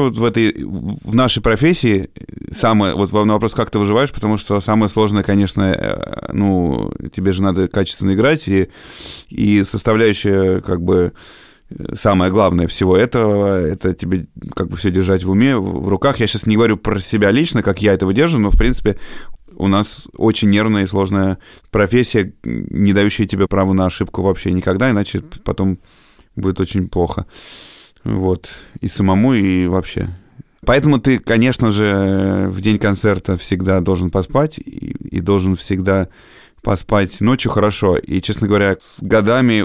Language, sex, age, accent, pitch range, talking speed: Russian, male, 20-39, native, 95-115 Hz, 155 wpm